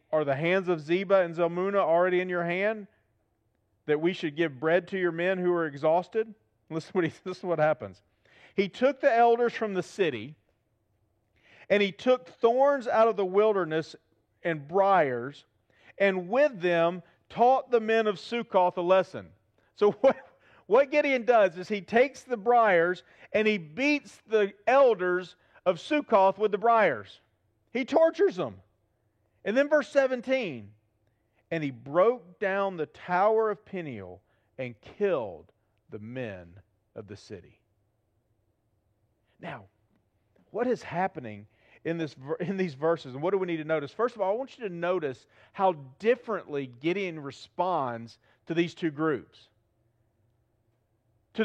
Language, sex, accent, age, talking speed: English, male, American, 40-59, 150 wpm